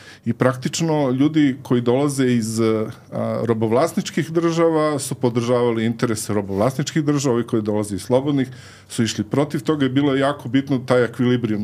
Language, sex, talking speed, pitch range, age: English, male, 150 wpm, 115-145 Hz, 40-59